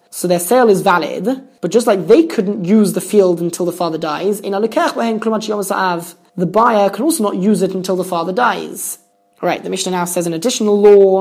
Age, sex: 20-39, male